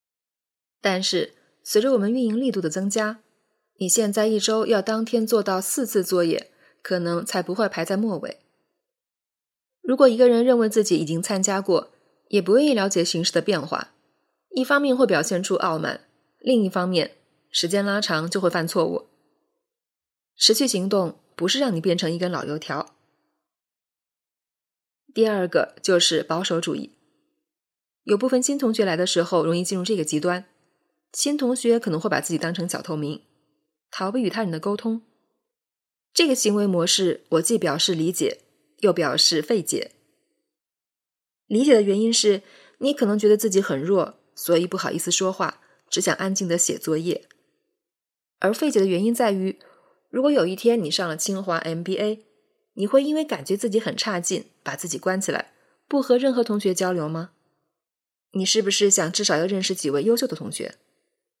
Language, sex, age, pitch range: Chinese, female, 20-39, 175-235 Hz